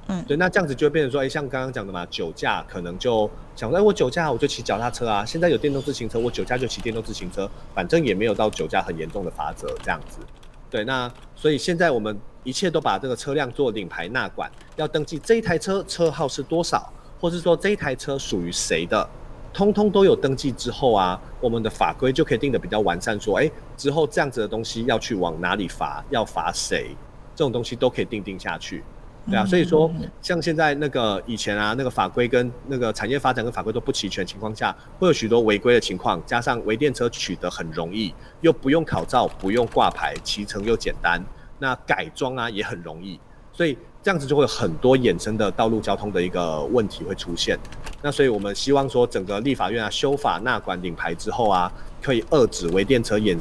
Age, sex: 30-49, male